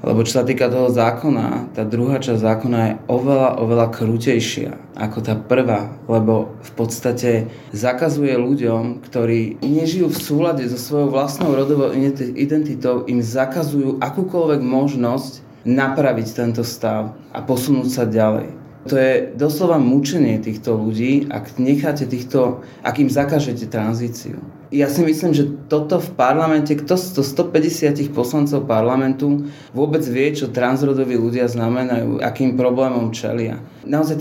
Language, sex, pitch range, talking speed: Slovak, male, 115-145 Hz, 135 wpm